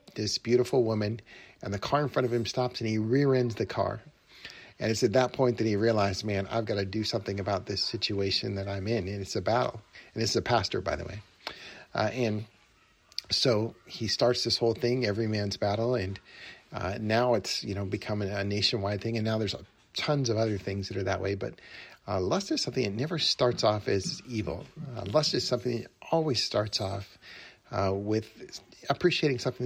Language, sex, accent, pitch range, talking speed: English, male, American, 100-120 Hz, 210 wpm